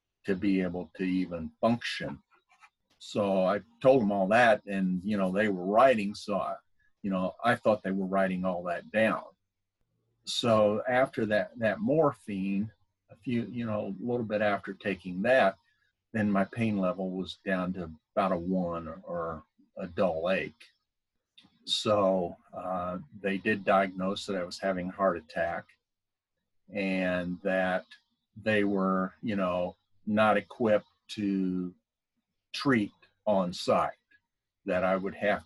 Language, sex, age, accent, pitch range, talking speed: English, male, 50-69, American, 90-105 Hz, 145 wpm